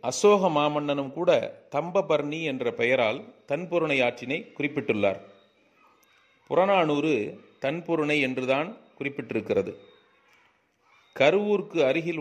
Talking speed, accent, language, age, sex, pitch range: 70 wpm, native, Tamil, 40-59, male, 135-185 Hz